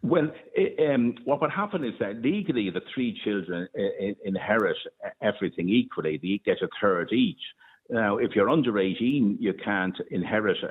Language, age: English, 60-79